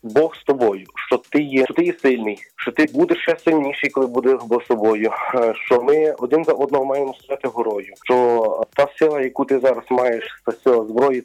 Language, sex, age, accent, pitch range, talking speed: Ukrainian, male, 30-49, native, 120-140 Hz, 205 wpm